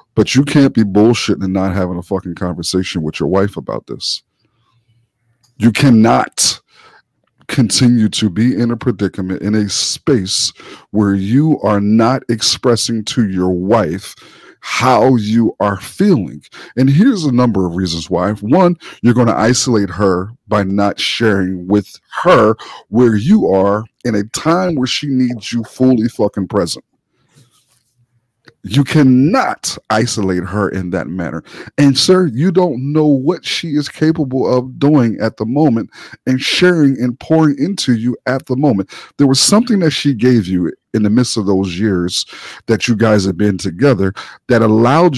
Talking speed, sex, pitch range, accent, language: 160 wpm, male, 105-135 Hz, American, English